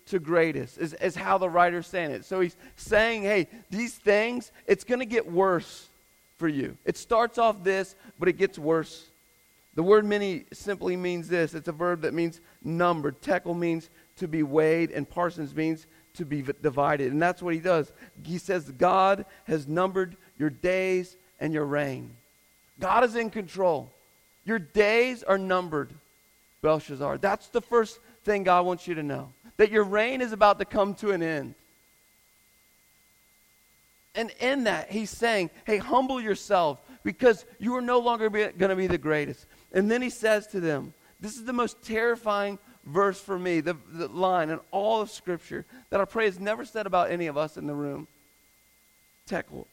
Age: 40-59